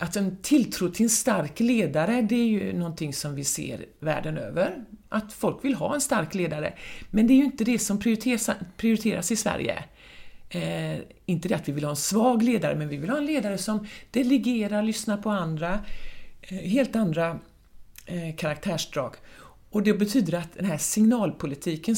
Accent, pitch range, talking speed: native, 150-220 Hz, 180 wpm